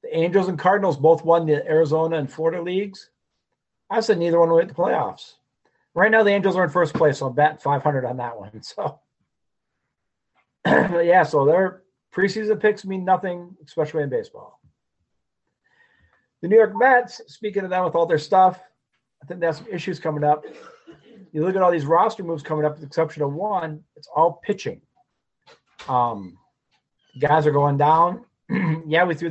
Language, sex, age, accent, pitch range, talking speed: English, male, 40-59, American, 145-185 Hz, 180 wpm